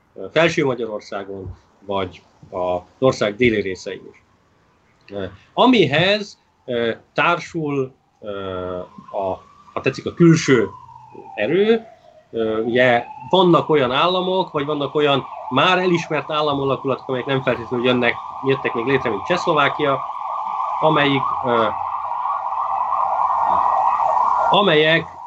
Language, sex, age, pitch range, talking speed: Hungarian, male, 30-49, 110-150 Hz, 100 wpm